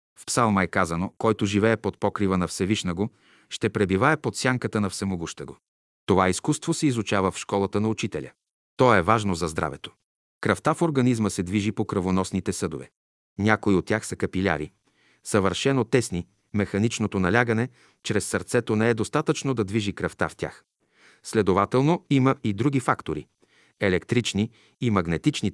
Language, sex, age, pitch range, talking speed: Bulgarian, male, 40-59, 95-125 Hz, 155 wpm